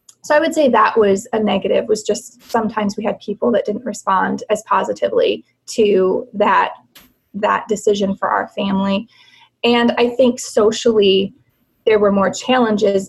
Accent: American